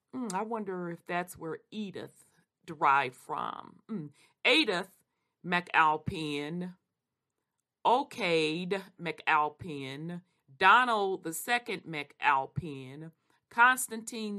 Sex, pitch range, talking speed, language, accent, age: female, 155-195 Hz, 75 wpm, English, American, 40-59